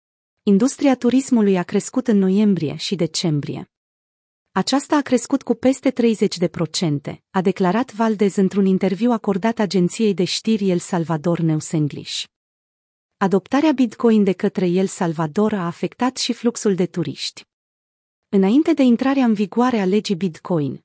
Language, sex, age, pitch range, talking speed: Romanian, female, 30-49, 175-230 Hz, 140 wpm